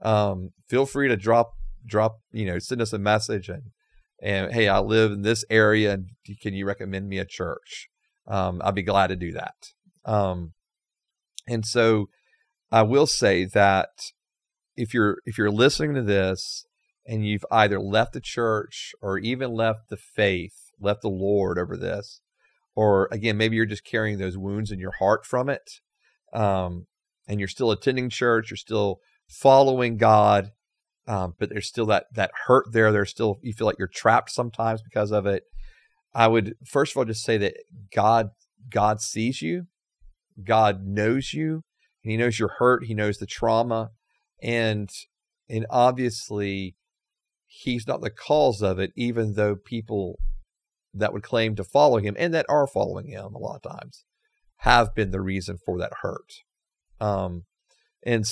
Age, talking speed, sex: 40-59, 170 wpm, male